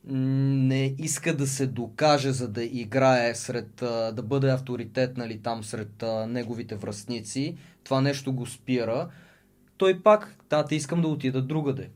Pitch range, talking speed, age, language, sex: 120-150 Hz, 145 wpm, 20-39, Bulgarian, male